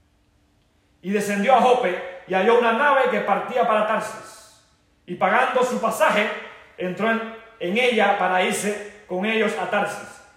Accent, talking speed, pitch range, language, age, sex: Mexican, 150 wpm, 185-230 Hz, Spanish, 40-59, male